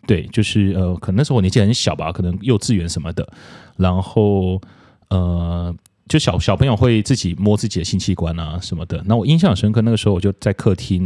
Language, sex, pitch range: Chinese, male, 90-120 Hz